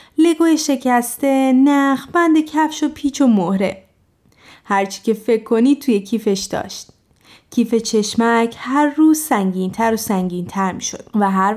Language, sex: Persian, female